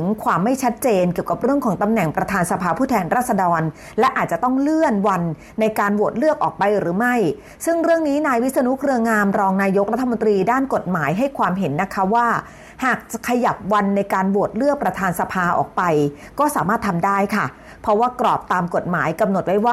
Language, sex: Thai, female